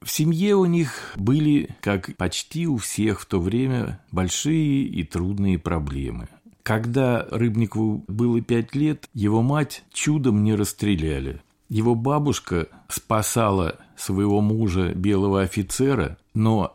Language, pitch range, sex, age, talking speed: Russian, 95-135 Hz, male, 50-69, 120 wpm